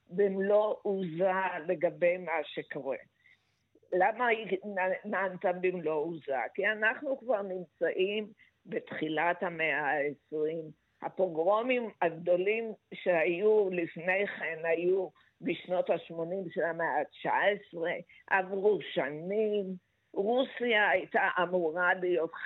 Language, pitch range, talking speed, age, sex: Hebrew, 170-210 Hz, 90 wpm, 50-69, female